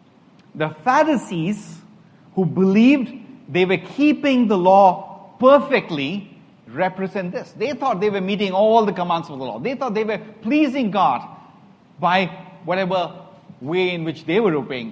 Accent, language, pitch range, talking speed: Indian, English, 165-225 Hz, 150 wpm